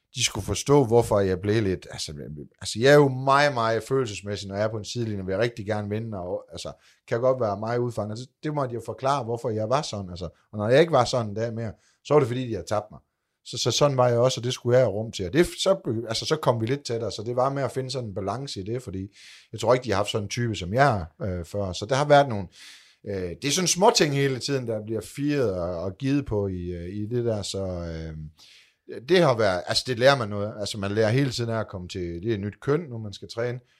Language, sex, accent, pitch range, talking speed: Danish, male, native, 100-125 Hz, 285 wpm